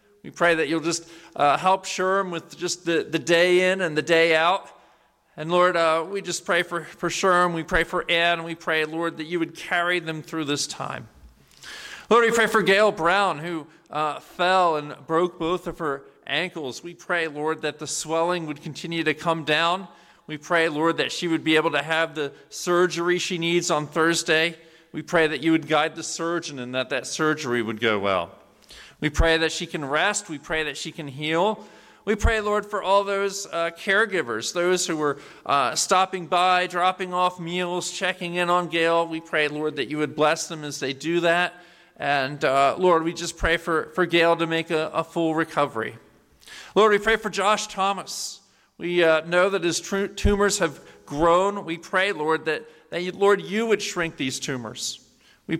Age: 40-59